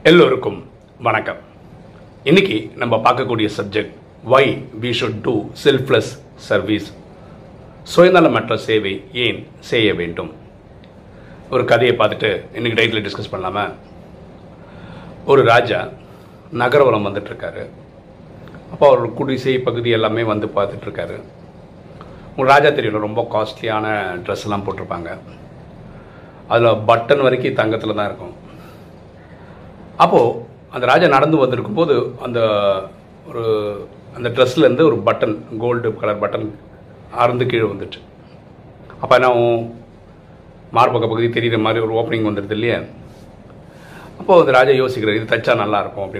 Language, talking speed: Tamil, 110 wpm